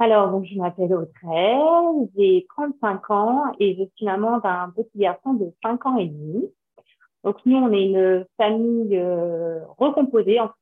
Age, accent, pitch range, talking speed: 30-49, French, 175-225 Hz, 165 wpm